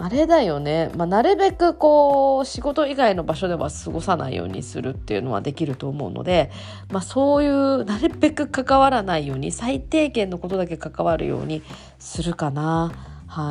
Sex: female